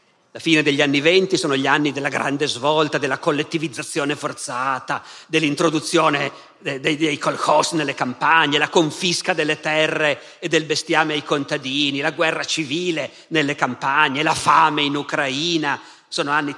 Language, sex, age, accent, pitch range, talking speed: Italian, male, 50-69, native, 145-185 Hz, 145 wpm